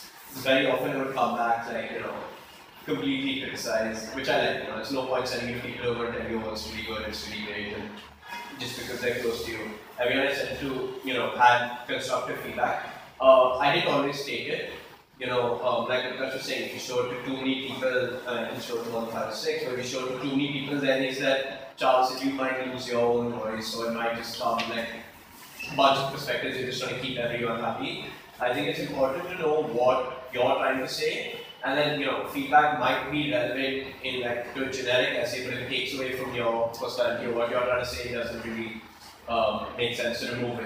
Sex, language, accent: male, English, Indian